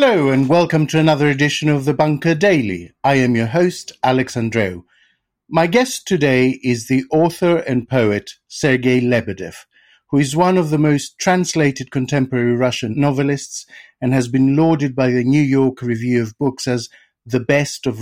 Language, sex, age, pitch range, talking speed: English, male, 50-69, 120-165 Hz, 165 wpm